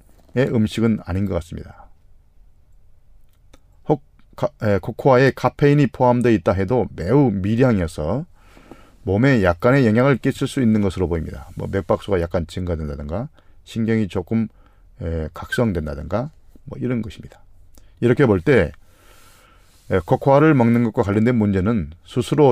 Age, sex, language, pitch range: 40-59, male, Korean, 85-115 Hz